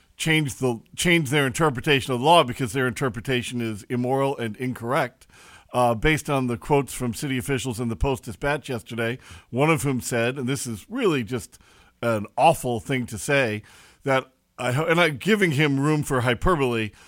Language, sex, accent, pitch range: English, male, American, 120-145 Hz